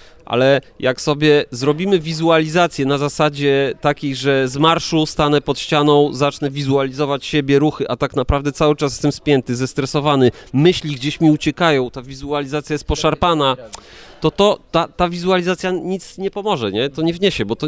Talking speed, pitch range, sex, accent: 165 wpm, 130-150 Hz, male, native